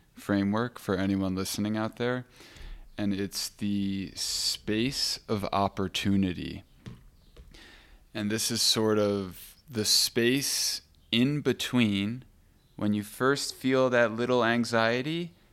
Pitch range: 100-120 Hz